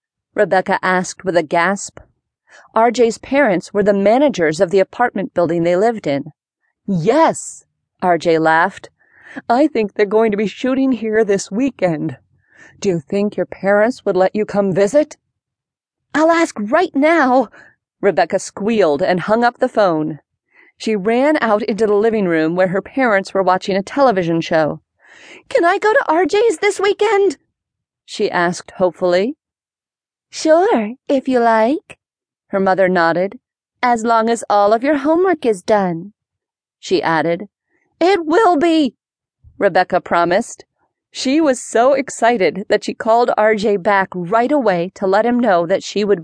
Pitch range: 185-270 Hz